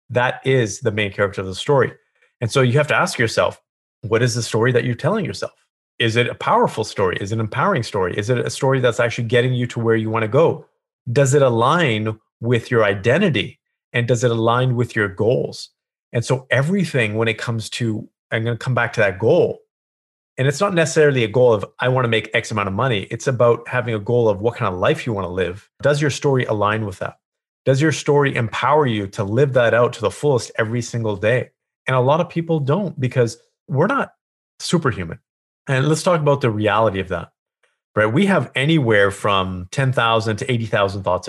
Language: English